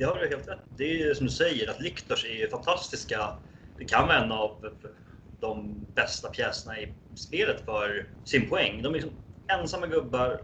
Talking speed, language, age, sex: 190 wpm, Swedish, 30-49, male